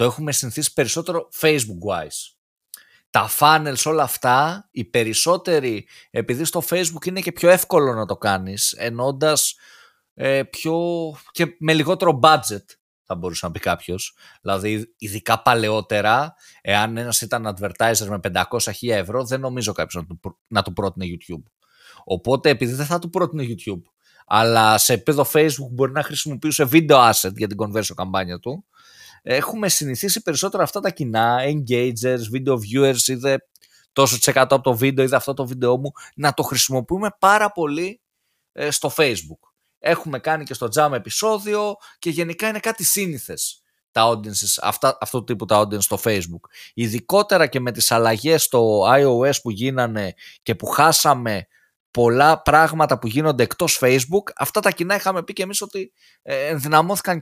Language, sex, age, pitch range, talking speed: Greek, male, 20-39, 115-165 Hz, 155 wpm